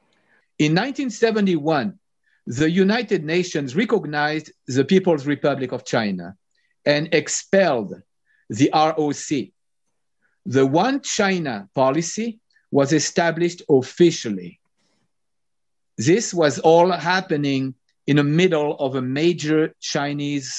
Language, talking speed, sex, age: English, 95 wpm, male, 50-69